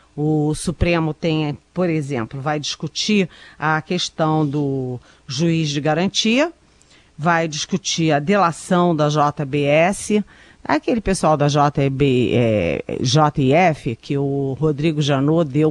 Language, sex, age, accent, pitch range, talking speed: Portuguese, female, 40-59, Brazilian, 145-175 Hz, 105 wpm